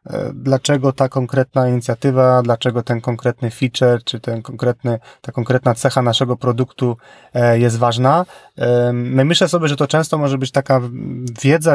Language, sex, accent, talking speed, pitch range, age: Polish, male, native, 130 wpm, 125-140 Hz, 20-39